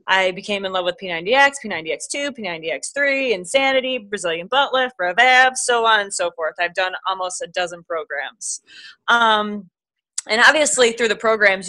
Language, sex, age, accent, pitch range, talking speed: English, female, 20-39, American, 190-255 Hz, 155 wpm